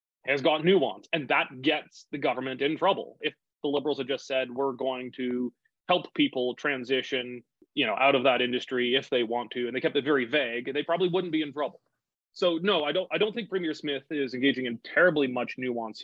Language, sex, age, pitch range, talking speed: English, male, 30-49, 125-155 Hz, 220 wpm